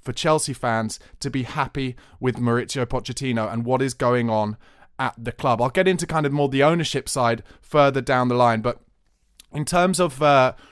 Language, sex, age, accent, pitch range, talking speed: English, male, 20-39, British, 125-155 Hz, 195 wpm